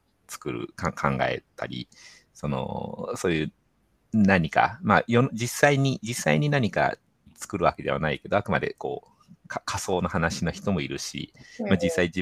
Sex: male